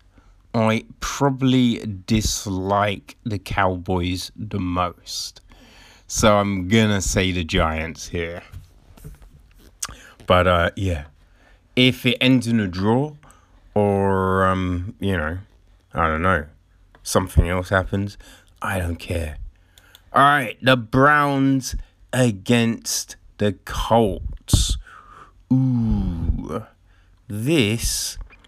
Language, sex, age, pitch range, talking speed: English, male, 30-49, 90-125 Hz, 95 wpm